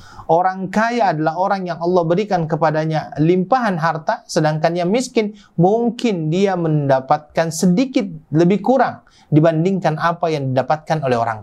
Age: 30-49